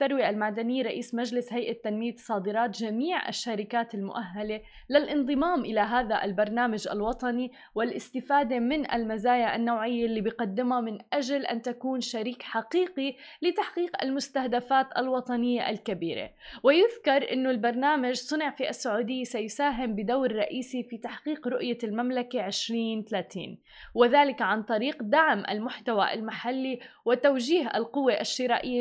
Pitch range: 220-265 Hz